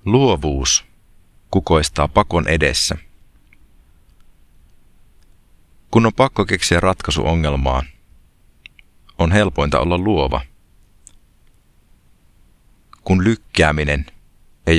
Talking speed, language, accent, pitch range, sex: 65 wpm, Finnish, native, 75-90 Hz, male